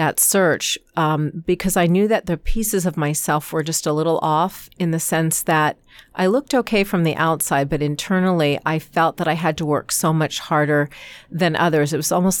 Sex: female